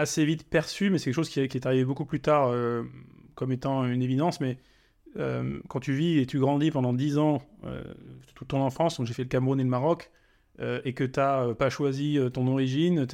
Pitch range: 125-155 Hz